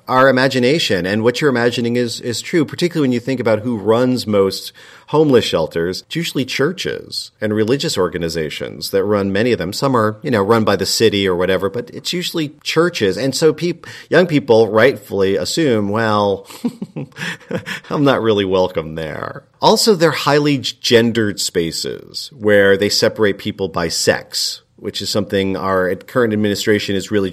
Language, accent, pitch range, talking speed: English, American, 105-135 Hz, 165 wpm